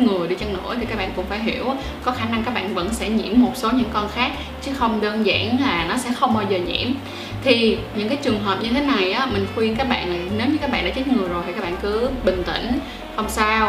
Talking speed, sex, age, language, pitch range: 275 wpm, female, 10-29, Vietnamese, 215-265 Hz